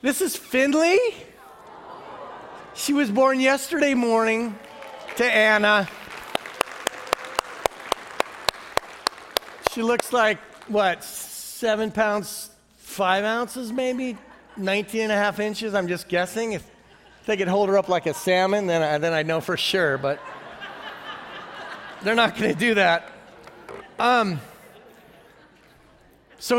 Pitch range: 135-215 Hz